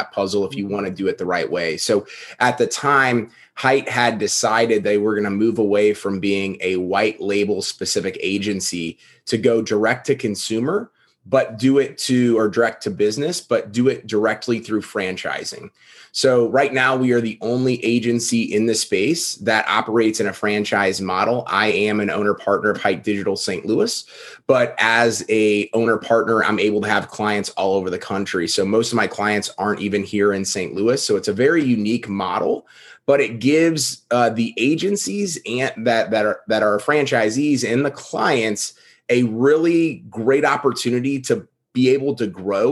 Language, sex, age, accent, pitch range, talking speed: English, male, 30-49, American, 105-125 Hz, 185 wpm